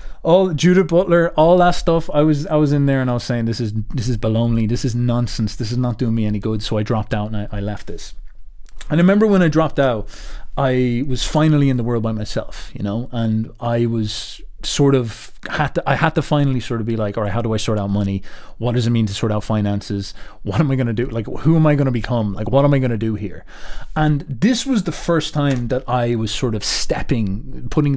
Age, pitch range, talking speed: 30-49, 115-150 Hz, 260 wpm